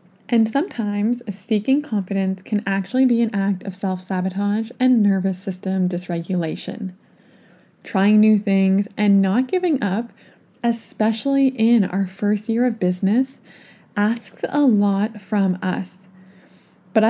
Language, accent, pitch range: English, American, 195-230 Hz